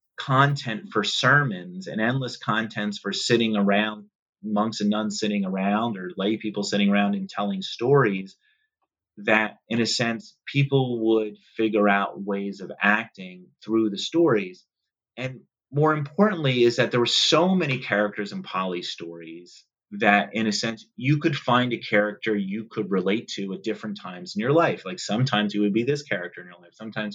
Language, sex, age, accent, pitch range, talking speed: English, male, 30-49, American, 105-150 Hz, 175 wpm